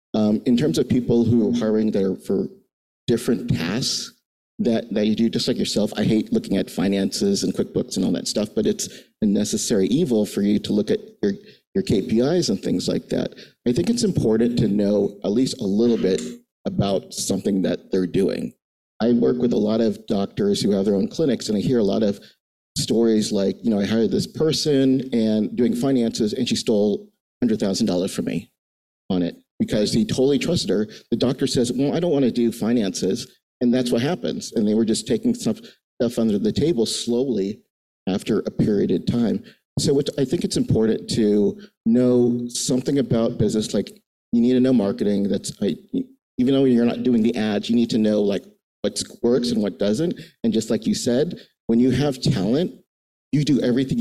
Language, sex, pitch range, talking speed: English, male, 105-130 Hz, 200 wpm